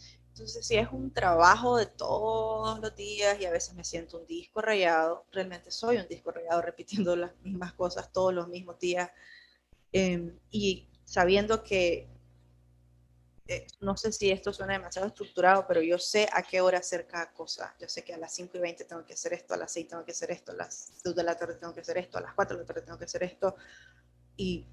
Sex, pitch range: female, 170-205 Hz